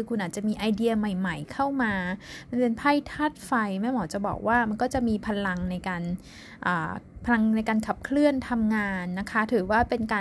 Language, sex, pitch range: Thai, female, 200-245 Hz